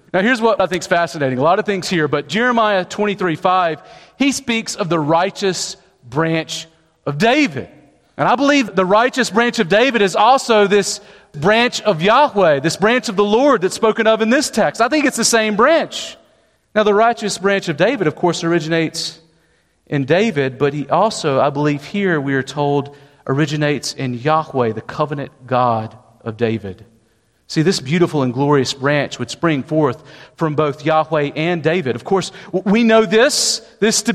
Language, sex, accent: English, male, American